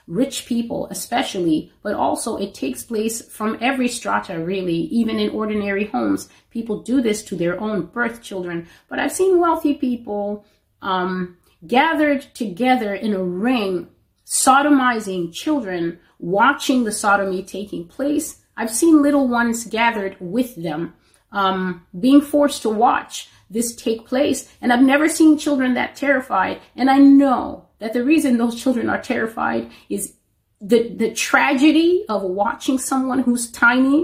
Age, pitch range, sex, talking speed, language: 30-49, 185-270 Hz, female, 145 wpm, English